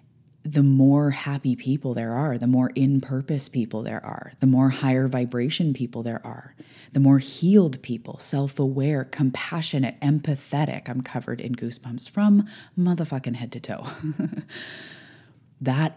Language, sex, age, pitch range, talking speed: English, female, 20-39, 125-145 Hz, 135 wpm